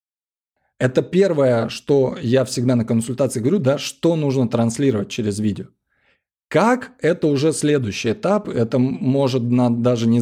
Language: Russian